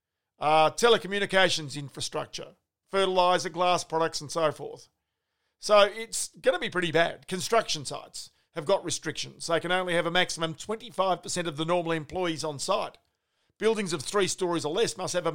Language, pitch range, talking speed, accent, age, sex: English, 155-195 Hz, 170 wpm, Australian, 50-69, male